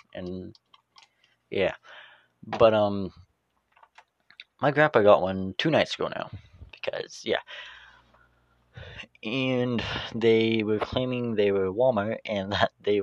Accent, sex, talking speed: American, male, 110 wpm